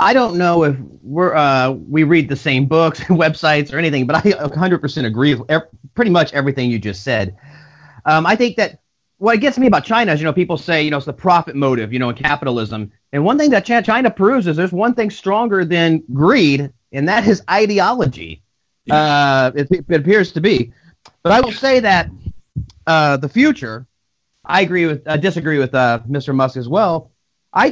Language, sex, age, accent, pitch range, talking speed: English, male, 40-59, American, 135-175 Hz, 205 wpm